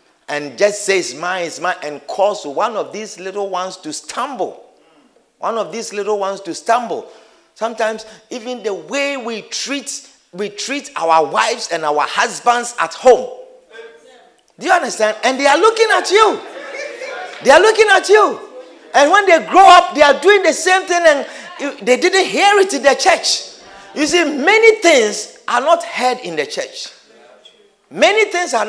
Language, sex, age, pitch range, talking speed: English, male, 50-69, 230-370 Hz, 175 wpm